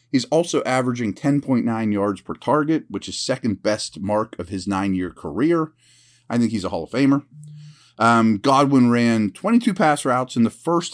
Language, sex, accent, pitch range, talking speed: English, male, American, 90-125 Hz, 175 wpm